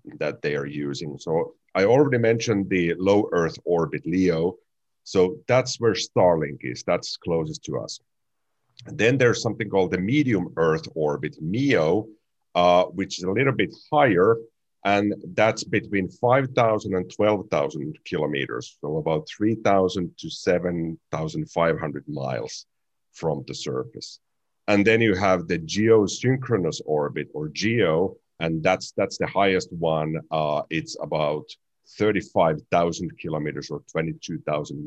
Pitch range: 80-105 Hz